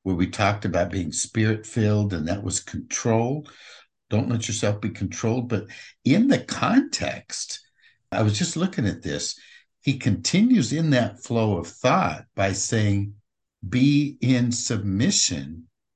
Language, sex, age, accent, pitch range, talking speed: English, male, 60-79, American, 95-125 Hz, 140 wpm